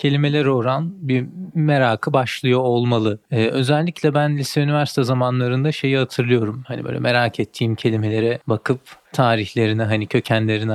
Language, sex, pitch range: Turkish, male, 115-140 Hz